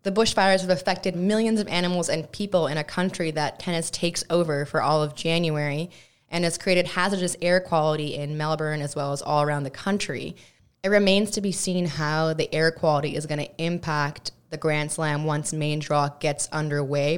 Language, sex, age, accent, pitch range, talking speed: English, female, 20-39, American, 150-175 Hz, 195 wpm